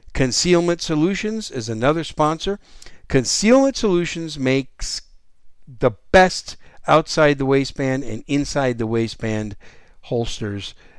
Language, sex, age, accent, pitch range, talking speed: English, male, 50-69, American, 115-160 Hz, 100 wpm